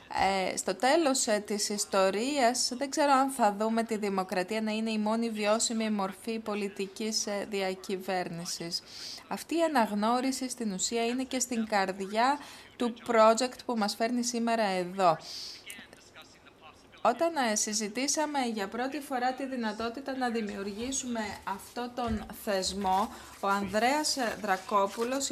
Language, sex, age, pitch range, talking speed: Greek, female, 20-39, 195-245 Hz, 120 wpm